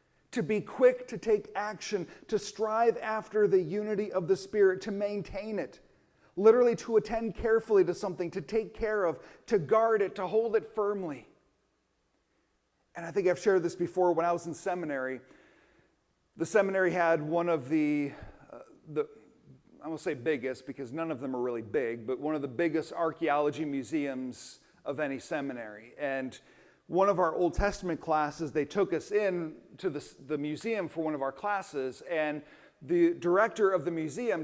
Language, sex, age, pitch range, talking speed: English, male, 40-59, 165-225 Hz, 175 wpm